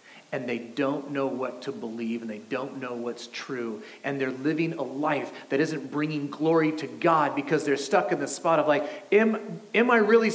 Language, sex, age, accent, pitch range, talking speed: English, male, 40-59, American, 190-245 Hz, 210 wpm